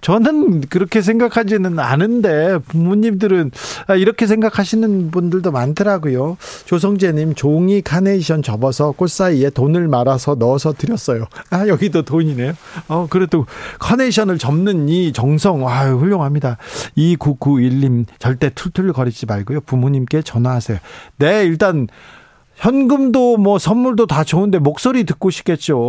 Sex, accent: male, native